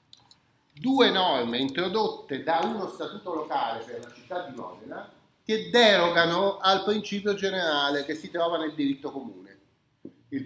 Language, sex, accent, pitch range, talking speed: Italian, male, native, 140-210 Hz, 140 wpm